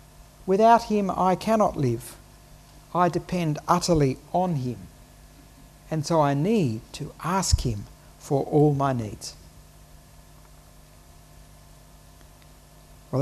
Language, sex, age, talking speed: English, male, 60-79, 100 wpm